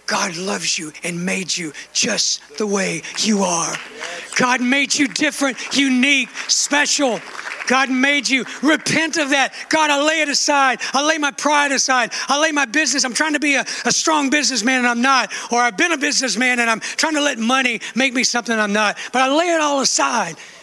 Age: 60-79